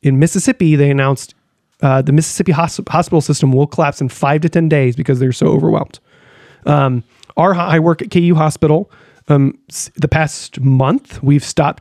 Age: 30-49